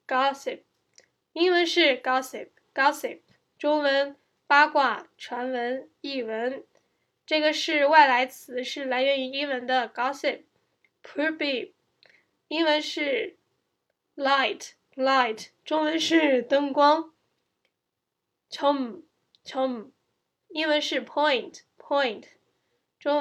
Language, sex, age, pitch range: Chinese, female, 10-29, 260-315 Hz